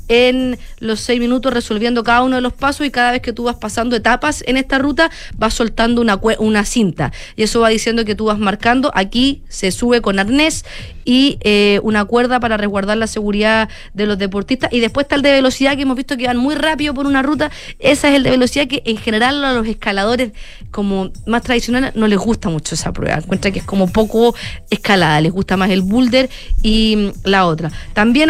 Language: Spanish